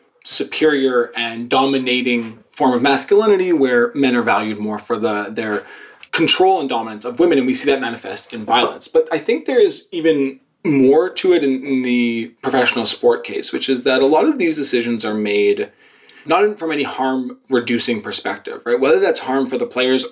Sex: male